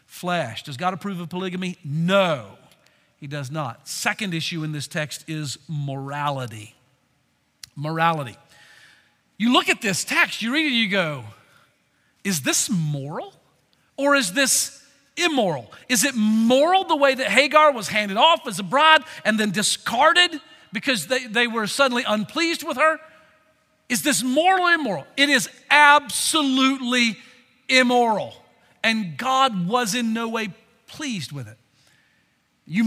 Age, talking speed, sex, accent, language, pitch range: 50-69, 140 wpm, male, American, English, 185-275 Hz